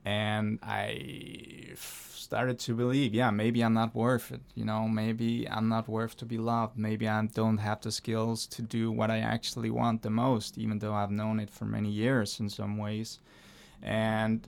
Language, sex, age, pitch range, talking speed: English, male, 20-39, 105-120 Hz, 190 wpm